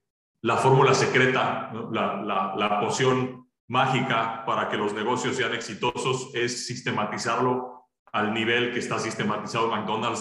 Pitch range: 120-155 Hz